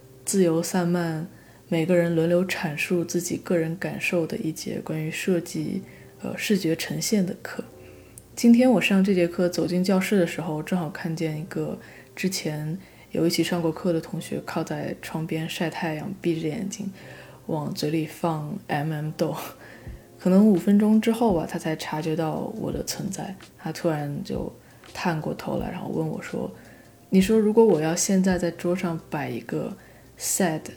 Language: Chinese